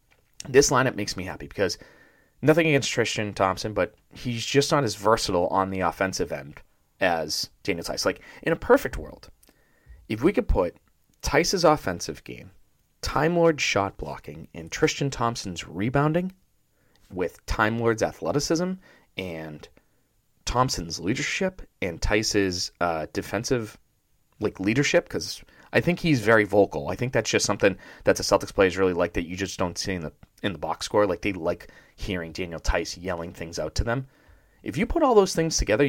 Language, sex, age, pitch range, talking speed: English, male, 30-49, 90-140 Hz, 170 wpm